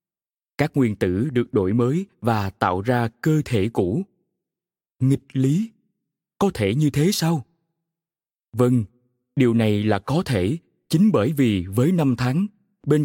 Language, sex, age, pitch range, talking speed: Vietnamese, male, 20-39, 110-165 Hz, 145 wpm